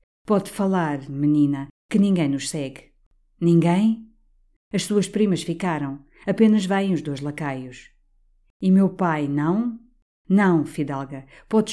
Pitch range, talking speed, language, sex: 145-200 Hz, 125 wpm, Portuguese, female